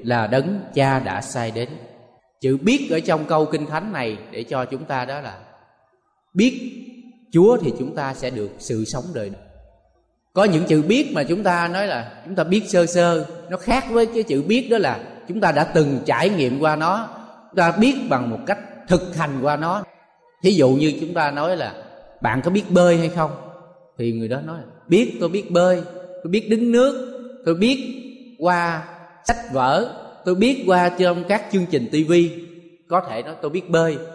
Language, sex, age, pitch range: Thai, male, 20-39, 130-190 Hz